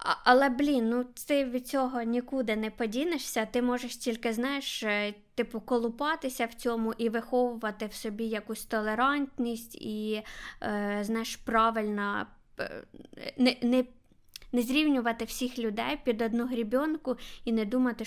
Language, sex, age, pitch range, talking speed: Ukrainian, female, 20-39, 220-245 Hz, 135 wpm